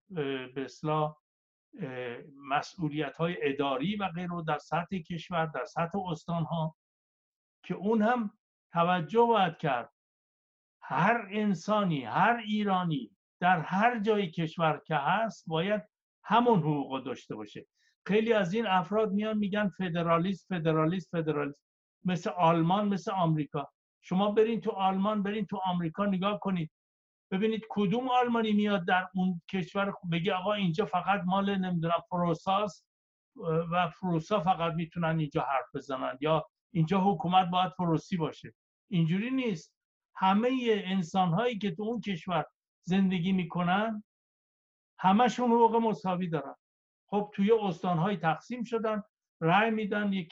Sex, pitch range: male, 165-210 Hz